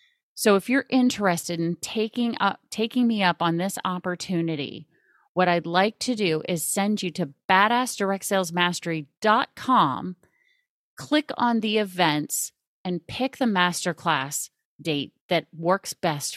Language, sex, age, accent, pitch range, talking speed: English, female, 30-49, American, 170-225 Hz, 130 wpm